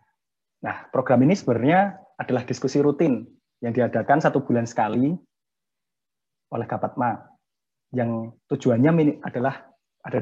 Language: Indonesian